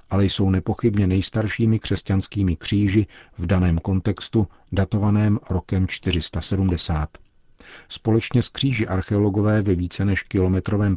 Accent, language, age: native, Czech, 50-69